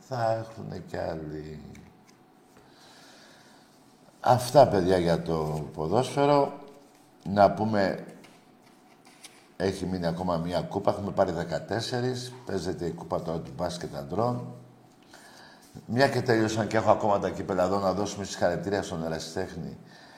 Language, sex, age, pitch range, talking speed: Greek, male, 50-69, 90-135 Hz, 120 wpm